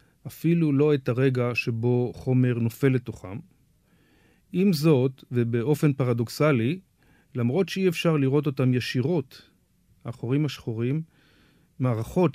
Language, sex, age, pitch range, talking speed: Hebrew, male, 40-59, 115-140 Hz, 100 wpm